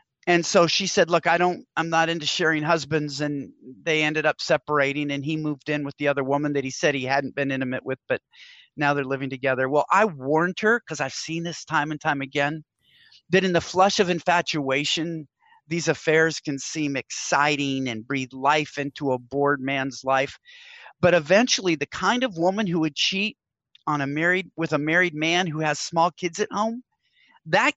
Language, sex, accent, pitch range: English, male, American, 145-180 Hz